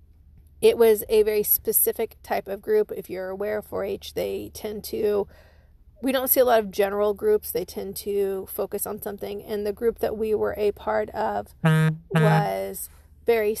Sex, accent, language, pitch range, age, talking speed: female, American, English, 205-245 Hz, 30-49, 180 wpm